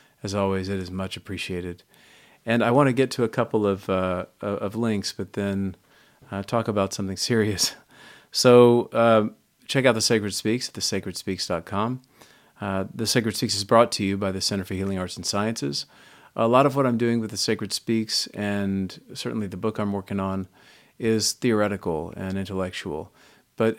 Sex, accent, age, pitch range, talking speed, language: male, American, 40-59, 95-110 Hz, 180 wpm, English